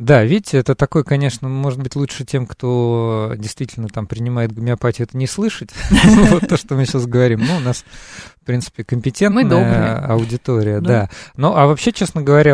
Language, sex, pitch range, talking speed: Russian, male, 115-145 Hz, 165 wpm